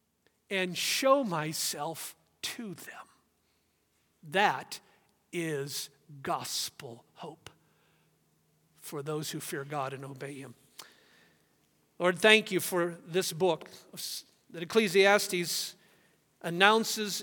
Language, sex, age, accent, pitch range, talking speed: English, male, 50-69, American, 160-210 Hz, 90 wpm